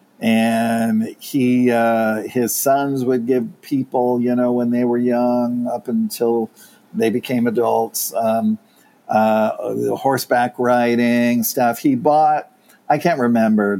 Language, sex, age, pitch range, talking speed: English, male, 50-69, 115-130 Hz, 130 wpm